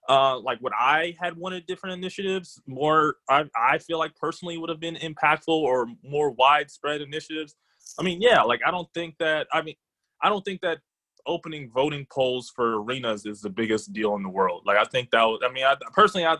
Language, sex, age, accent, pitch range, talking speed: English, male, 20-39, American, 120-160 Hz, 210 wpm